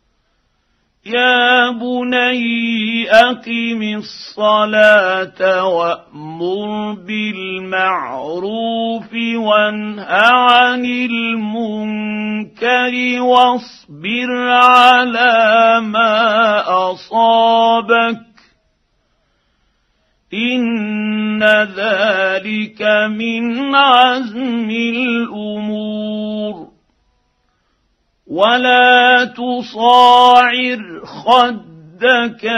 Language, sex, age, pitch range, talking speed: Arabic, male, 50-69, 210-245 Hz, 40 wpm